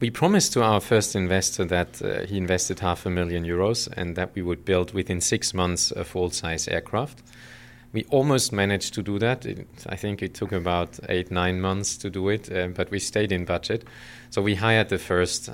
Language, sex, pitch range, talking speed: English, male, 85-100 Hz, 205 wpm